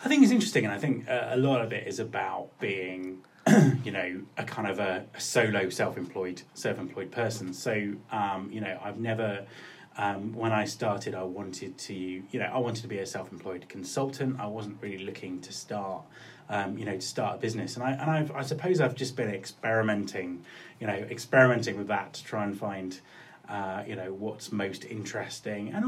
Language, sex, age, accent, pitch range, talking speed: English, male, 30-49, British, 95-120 Hz, 205 wpm